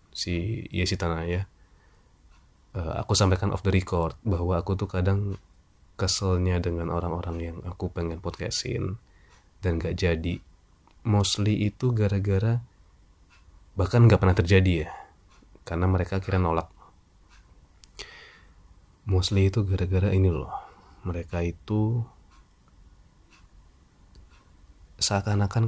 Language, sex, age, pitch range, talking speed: Indonesian, male, 20-39, 85-105 Hz, 100 wpm